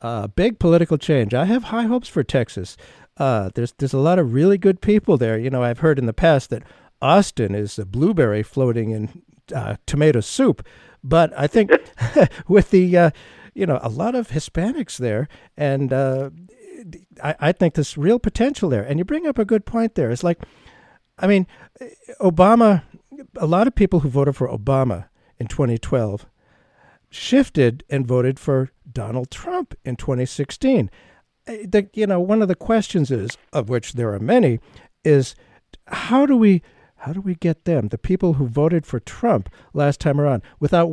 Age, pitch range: 60-79, 125-190 Hz